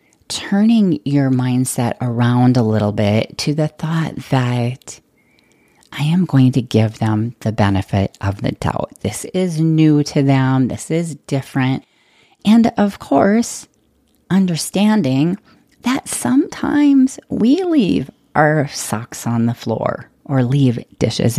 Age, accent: 30-49, American